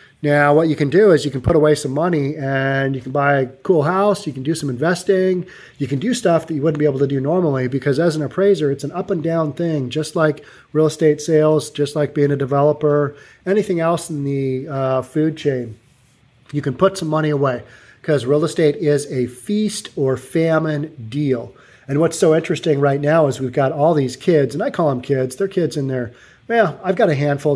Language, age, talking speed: English, 30-49, 225 wpm